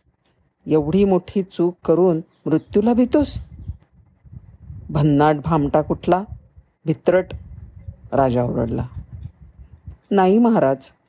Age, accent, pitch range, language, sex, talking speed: 50-69, native, 145-200 Hz, Marathi, female, 75 wpm